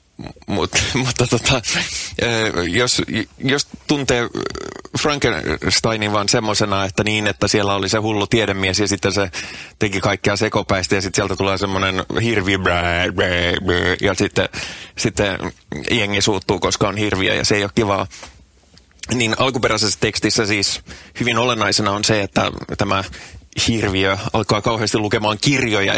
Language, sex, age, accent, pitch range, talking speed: English, male, 20-39, Finnish, 95-115 Hz, 125 wpm